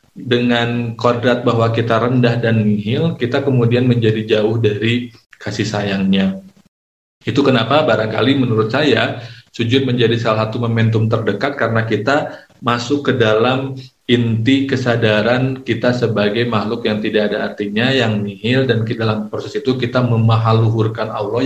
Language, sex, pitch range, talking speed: Indonesian, male, 110-120 Hz, 135 wpm